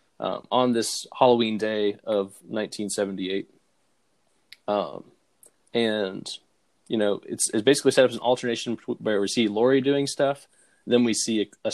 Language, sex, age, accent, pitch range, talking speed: English, male, 20-39, American, 105-125 Hz, 155 wpm